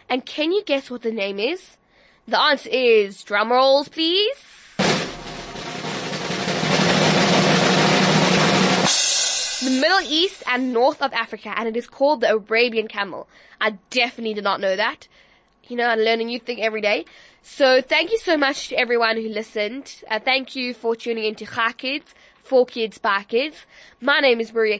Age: 10-29